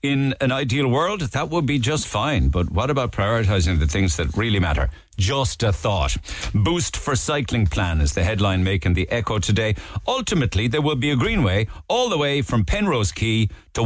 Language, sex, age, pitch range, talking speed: English, male, 50-69, 90-125 Hz, 195 wpm